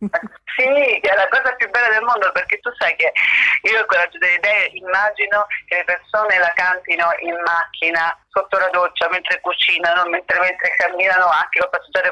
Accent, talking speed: native, 180 wpm